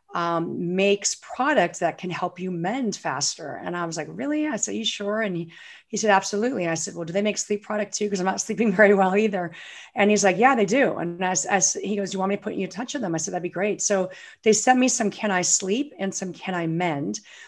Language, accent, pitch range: English, American, 175-210 Hz